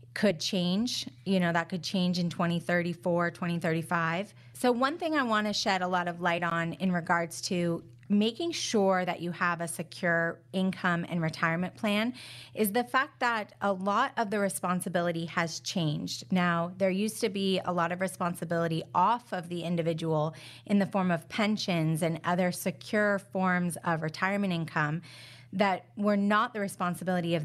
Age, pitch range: 30-49, 170-200 Hz